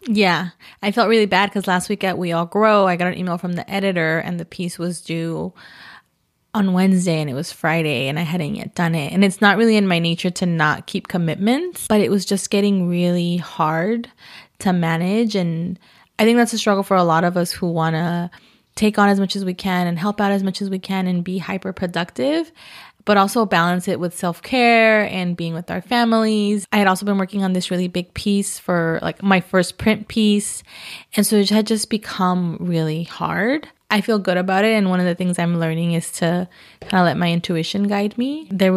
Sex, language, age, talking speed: female, English, 20-39, 225 wpm